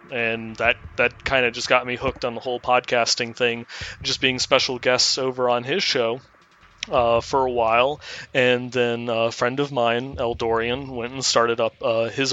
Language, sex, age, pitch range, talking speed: English, male, 30-49, 115-135 Hz, 185 wpm